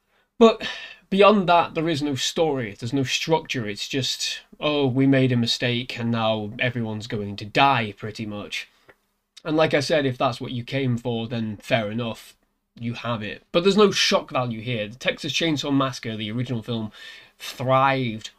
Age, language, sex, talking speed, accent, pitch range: 20-39, English, male, 180 wpm, British, 115-145 Hz